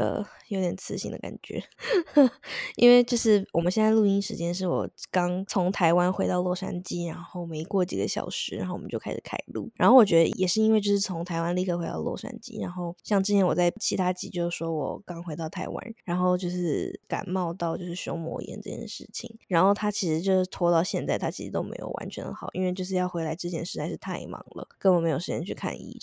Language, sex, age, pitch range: Chinese, female, 20-39, 170-205 Hz